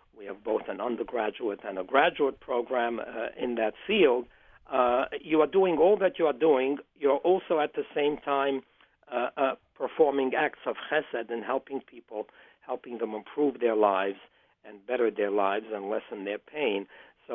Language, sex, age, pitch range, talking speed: English, male, 60-79, 115-175 Hz, 175 wpm